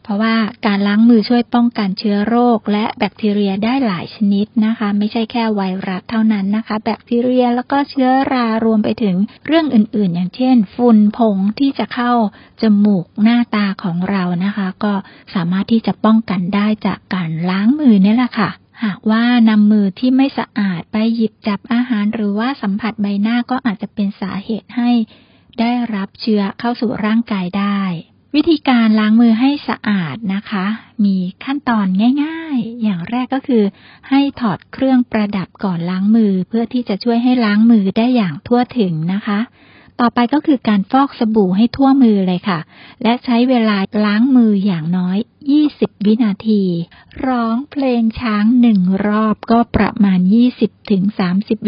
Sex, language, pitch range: female, Thai, 200-240 Hz